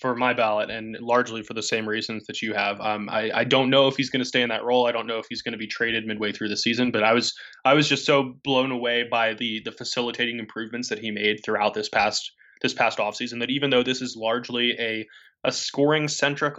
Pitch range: 115-130 Hz